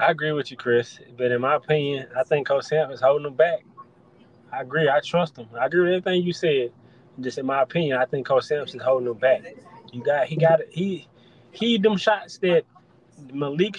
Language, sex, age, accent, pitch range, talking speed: English, male, 20-39, American, 145-180 Hz, 220 wpm